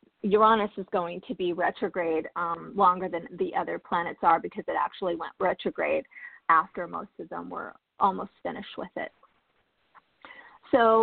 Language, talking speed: English, 150 wpm